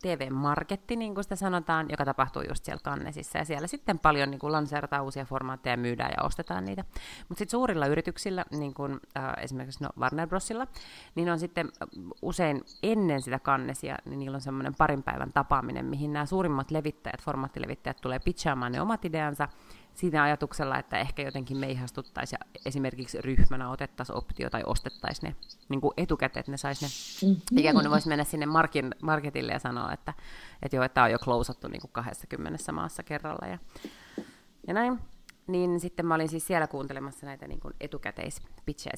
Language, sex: Finnish, female